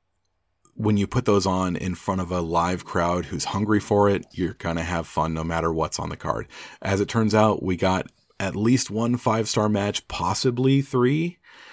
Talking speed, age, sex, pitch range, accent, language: 200 wpm, 40-59, male, 85-105 Hz, American, English